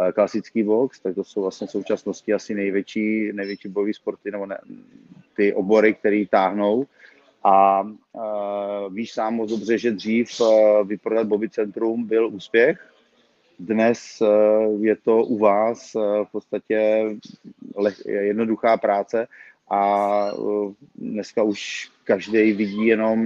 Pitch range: 105-115 Hz